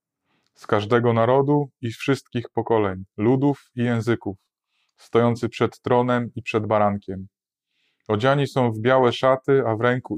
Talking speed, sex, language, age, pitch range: 140 wpm, male, Polish, 20-39, 110-130 Hz